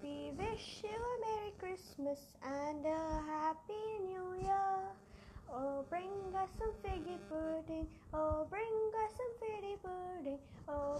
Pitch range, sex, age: 310-390 Hz, female, 20-39